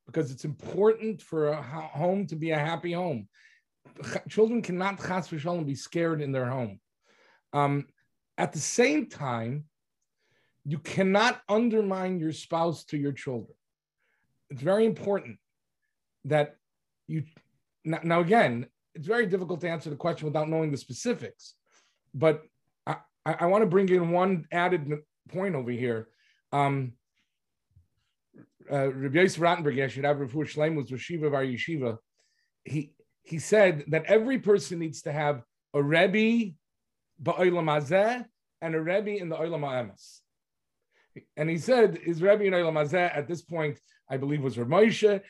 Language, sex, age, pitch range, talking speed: English, male, 40-59, 140-190 Hz, 130 wpm